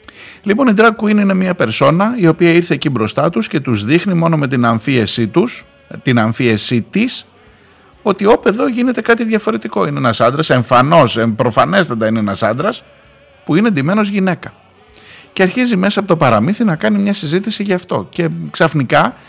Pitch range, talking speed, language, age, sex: 110-180 Hz, 160 wpm, Greek, 50-69, male